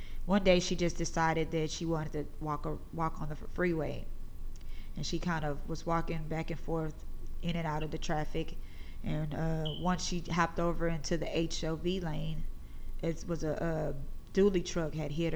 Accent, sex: American, female